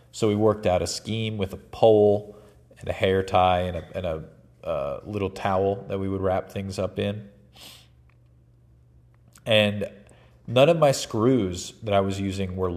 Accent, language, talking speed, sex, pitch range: American, English, 175 wpm, male, 90-105 Hz